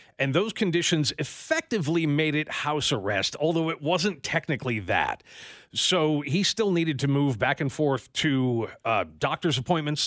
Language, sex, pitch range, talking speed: English, male, 130-165 Hz, 155 wpm